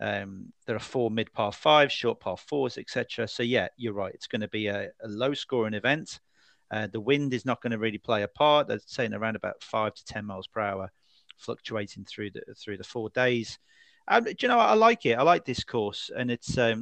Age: 40-59